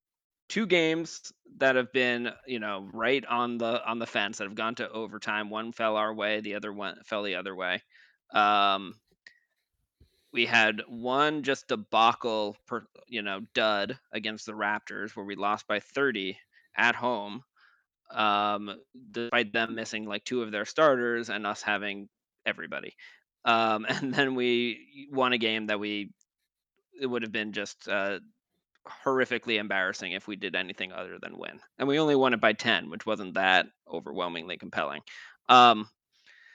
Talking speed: 165 wpm